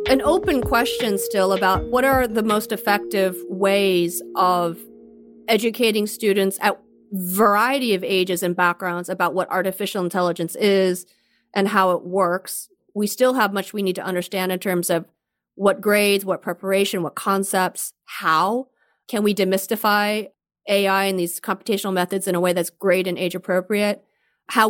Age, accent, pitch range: 30-49, American, 185-230 Hz